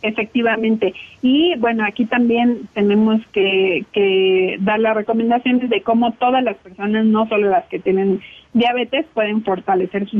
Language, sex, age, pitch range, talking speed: Spanish, female, 40-59, 200-240 Hz, 145 wpm